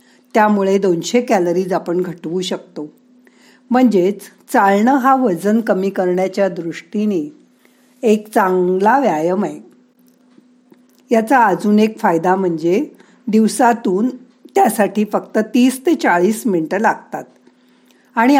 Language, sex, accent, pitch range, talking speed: Marathi, female, native, 190-250 Hz, 100 wpm